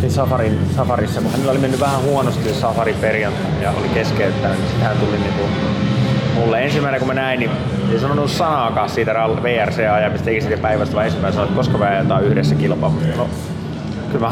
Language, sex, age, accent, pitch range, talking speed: Finnish, male, 30-49, native, 110-140 Hz, 175 wpm